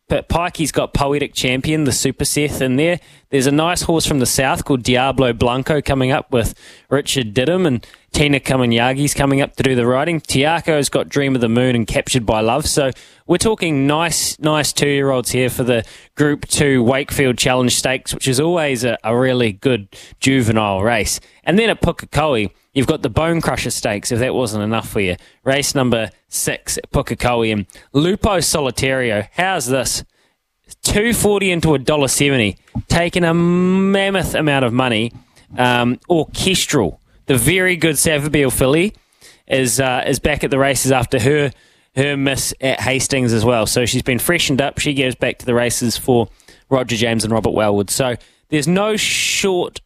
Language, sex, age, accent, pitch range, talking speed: English, male, 20-39, Australian, 125-150 Hz, 175 wpm